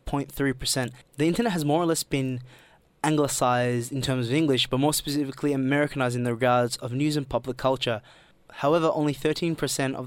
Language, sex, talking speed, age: English, male, 175 wpm, 20-39